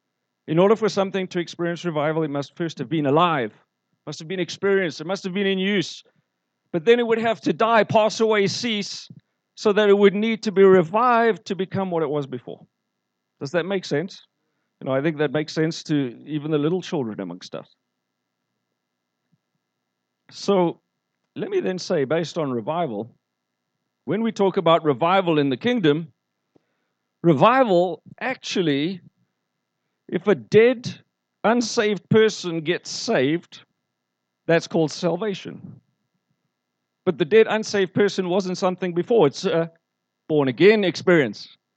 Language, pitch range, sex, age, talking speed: English, 140-200 Hz, male, 50-69, 150 wpm